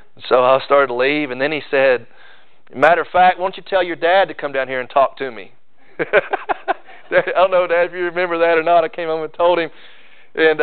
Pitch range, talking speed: 135-185 Hz, 235 wpm